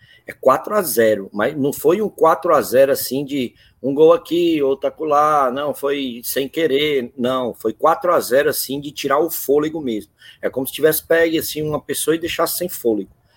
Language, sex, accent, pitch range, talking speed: Portuguese, male, Brazilian, 125-165 Hz, 175 wpm